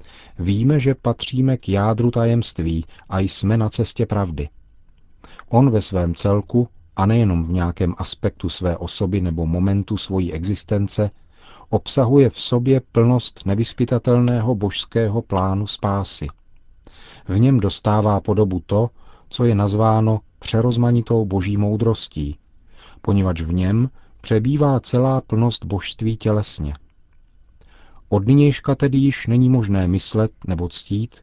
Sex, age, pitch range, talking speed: male, 40-59, 90-115 Hz, 120 wpm